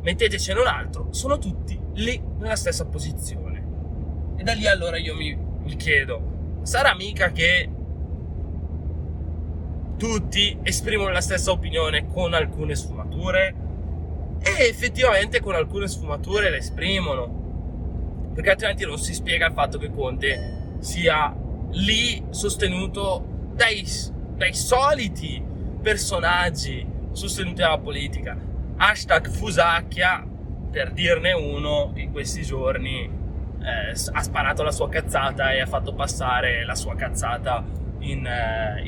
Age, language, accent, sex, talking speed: 20-39, Italian, native, male, 120 wpm